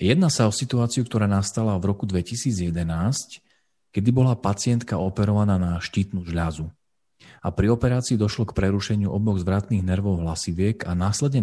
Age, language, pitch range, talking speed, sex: 40-59, Slovak, 90-110 Hz, 145 wpm, male